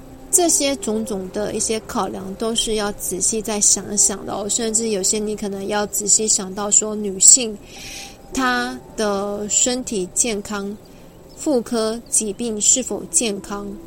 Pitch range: 200-235 Hz